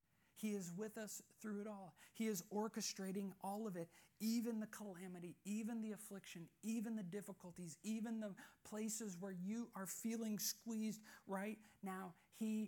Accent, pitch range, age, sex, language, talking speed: American, 200-245 Hz, 40-59, male, English, 155 wpm